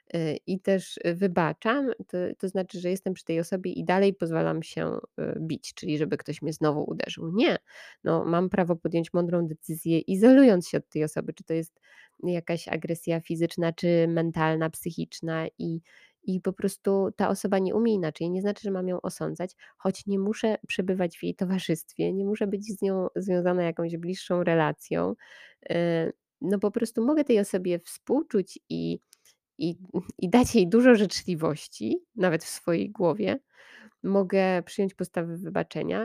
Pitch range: 165-205 Hz